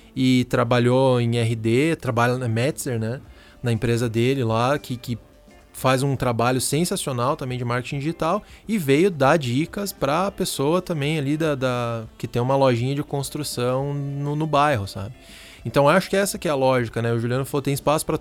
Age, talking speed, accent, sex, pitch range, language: 20-39, 190 wpm, Brazilian, male, 120-150 Hz, Portuguese